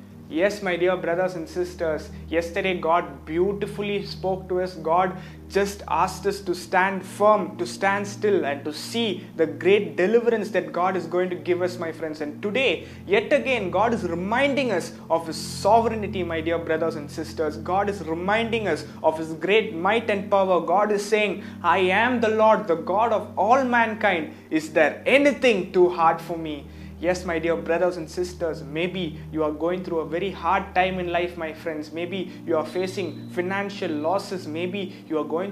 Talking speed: 190 wpm